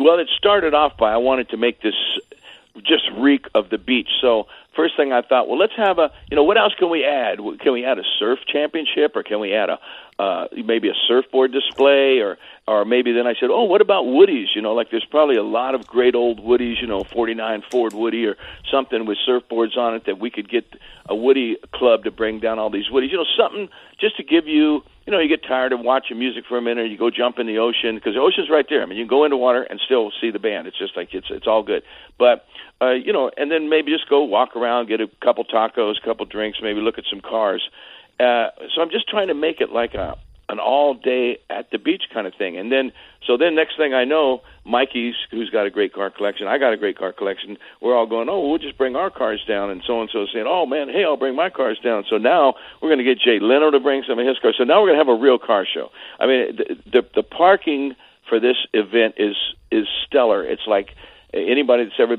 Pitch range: 115-170 Hz